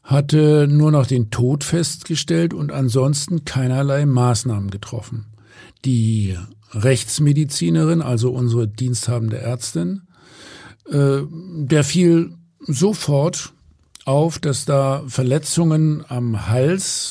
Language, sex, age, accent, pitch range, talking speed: German, male, 50-69, German, 120-150 Hz, 90 wpm